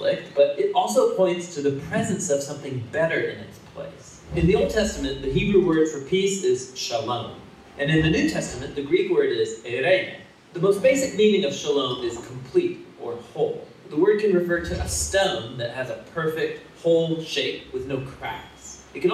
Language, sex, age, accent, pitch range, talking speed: English, male, 30-49, American, 135-215 Hz, 195 wpm